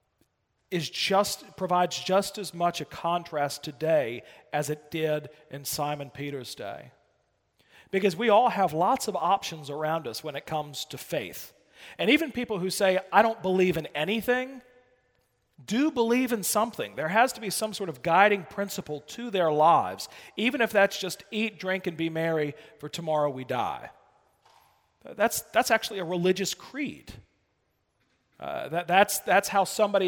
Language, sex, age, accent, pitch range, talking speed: English, male, 40-59, American, 155-205 Hz, 160 wpm